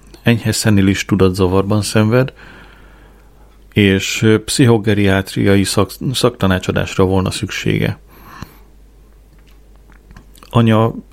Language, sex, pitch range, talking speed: Hungarian, male, 95-110 Hz, 60 wpm